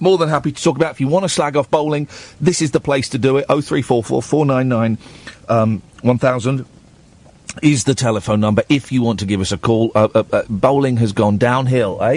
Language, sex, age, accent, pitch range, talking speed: English, male, 40-59, British, 120-160 Hz, 215 wpm